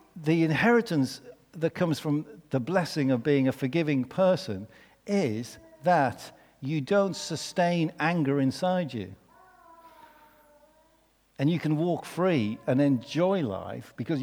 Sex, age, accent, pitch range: male, 60-79, British, 135-190 Hz